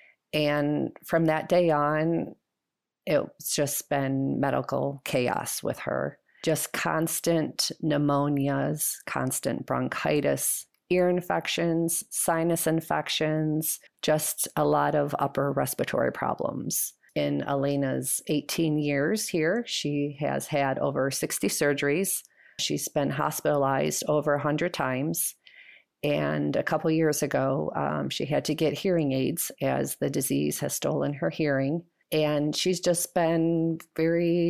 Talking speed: 120 wpm